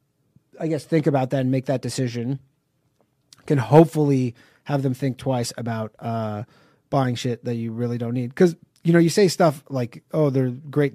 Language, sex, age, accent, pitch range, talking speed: English, male, 30-49, American, 120-150 Hz, 185 wpm